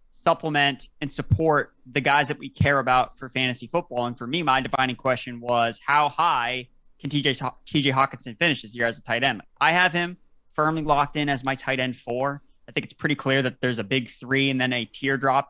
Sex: male